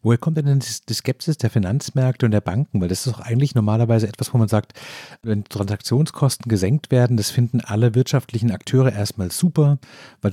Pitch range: 110-135 Hz